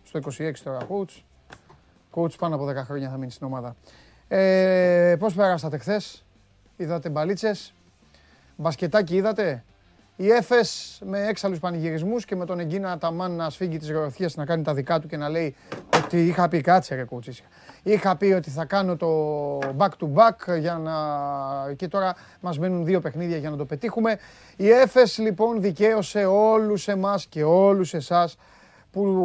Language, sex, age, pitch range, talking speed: Greek, male, 30-49, 150-195 Hz, 160 wpm